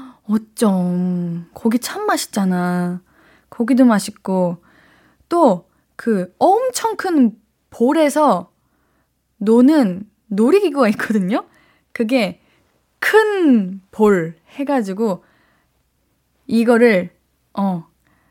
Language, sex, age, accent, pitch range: Korean, female, 20-39, native, 200-280 Hz